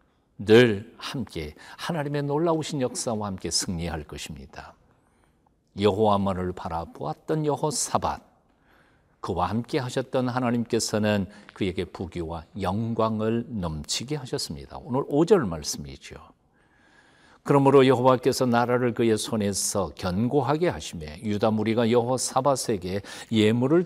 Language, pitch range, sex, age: Korean, 90-125 Hz, male, 50-69